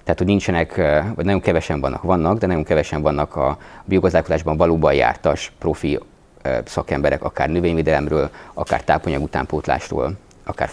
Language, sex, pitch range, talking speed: Hungarian, male, 75-95 Hz, 130 wpm